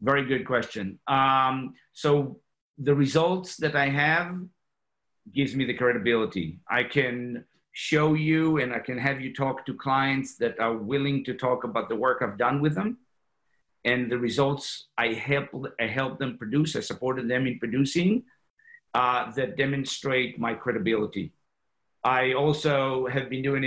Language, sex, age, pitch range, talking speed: English, male, 50-69, 120-140 Hz, 155 wpm